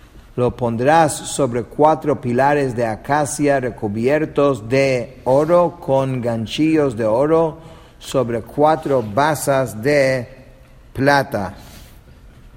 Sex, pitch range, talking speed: male, 115-140 Hz, 90 wpm